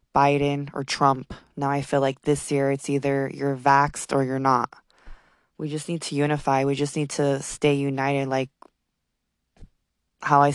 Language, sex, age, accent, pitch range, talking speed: English, female, 20-39, American, 140-155 Hz, 170 wpm